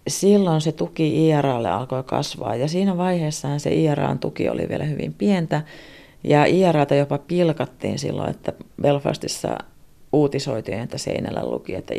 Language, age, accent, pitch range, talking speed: Finnish, 30-49, native, 140-170 Hz, 140 wpm